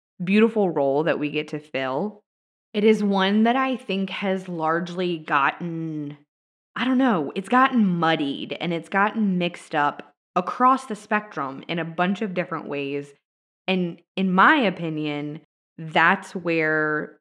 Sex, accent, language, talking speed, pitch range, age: female, American, English, 145 wpm, 155-200 Hz, 20-39